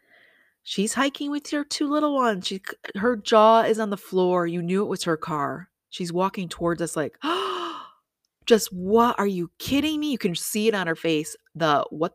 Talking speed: 200 wpm